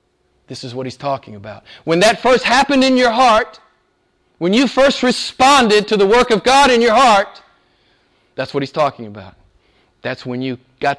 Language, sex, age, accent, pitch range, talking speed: English, male, 40-59, American, 130-215 Hz, 185 wpm